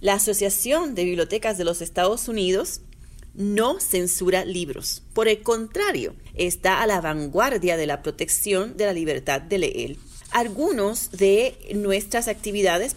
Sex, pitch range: female, 185-240 Hz